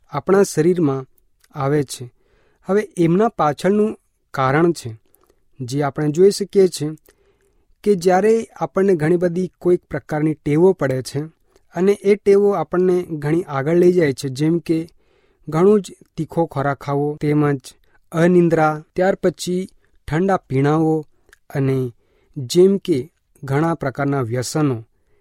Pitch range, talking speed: 140-185 Hz, 95 wpm